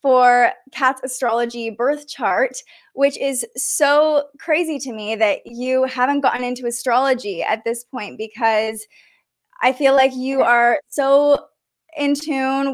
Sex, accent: female, American